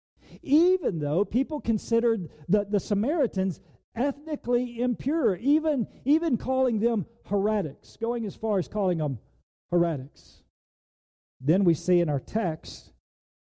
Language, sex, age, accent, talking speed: English, male, 50-69, American, 120 wpm